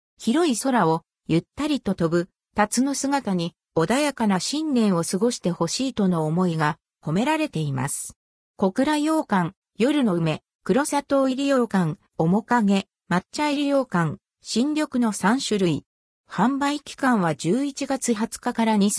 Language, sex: Japanese, female